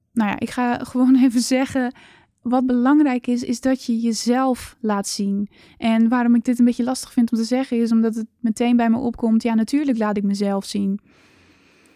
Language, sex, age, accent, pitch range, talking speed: Dutch, female, 10-29, Dutch, 215-250 Hz, 200 wpm